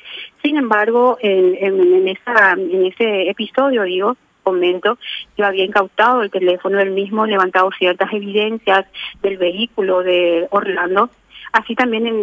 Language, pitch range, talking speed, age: Spanish, 190-220 Hz, 125 wpm, 30-49